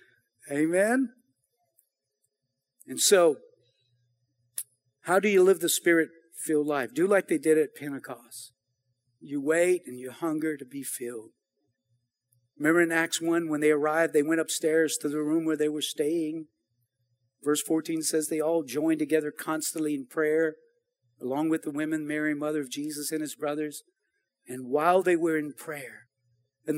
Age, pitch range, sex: 50-69, 130-165 Hz, male